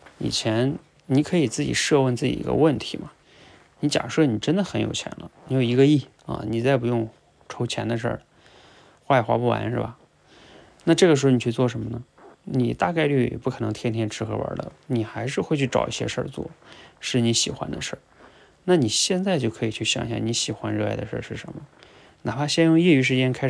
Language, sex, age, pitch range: Chinese, male, 20-39, 115-140 Hz